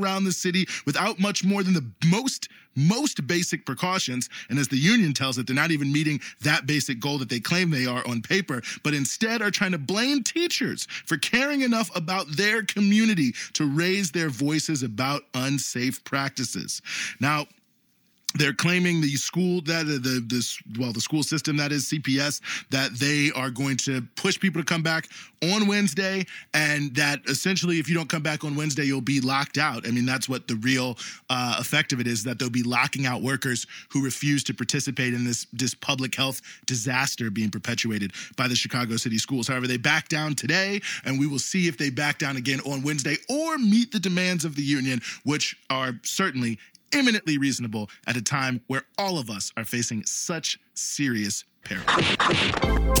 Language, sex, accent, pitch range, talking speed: English, male, American, 130-180 Hz, 190 wpm